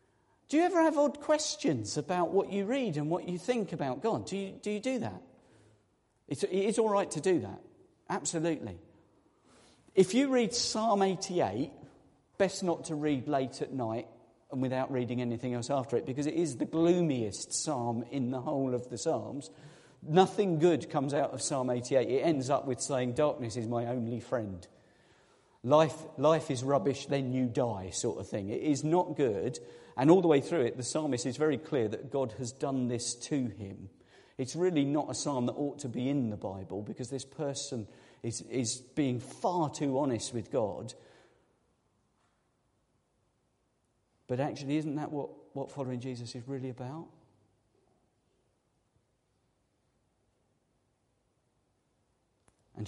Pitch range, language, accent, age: 125-165 Hz, English, British, 40-59